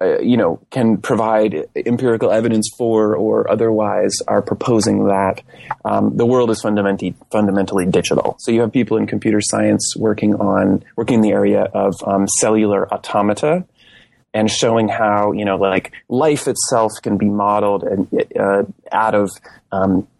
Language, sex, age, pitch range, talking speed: English, male, 30-49, 105-125 Hz, 155 wpm